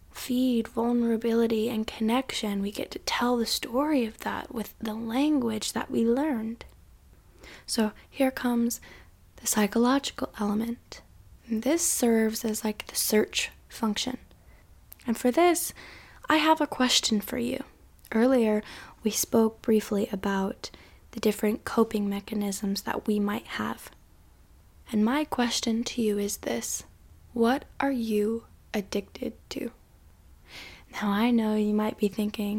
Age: 10-29